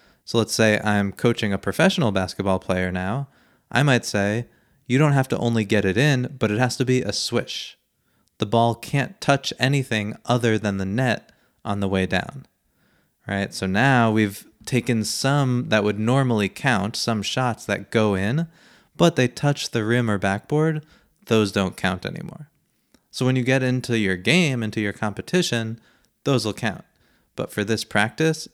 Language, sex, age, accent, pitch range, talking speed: English, male, 20-39, American, 105-135 Hz, 175 wpm